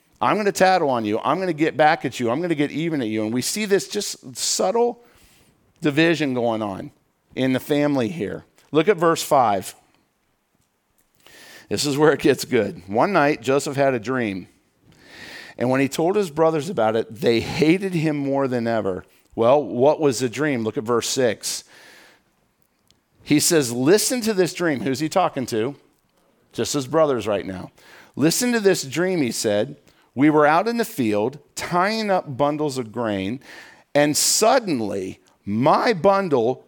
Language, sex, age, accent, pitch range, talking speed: English, male, 50-69, American, 125-175 Hz, 175 wpm